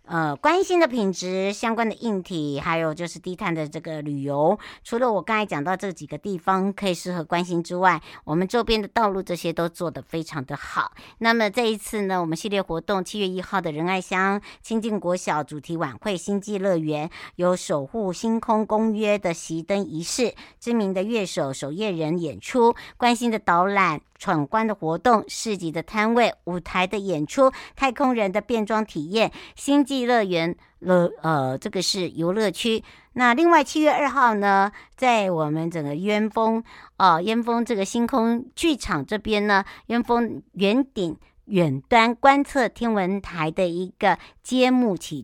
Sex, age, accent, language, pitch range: male, 60-79, American, Chinese, 170-225 Hz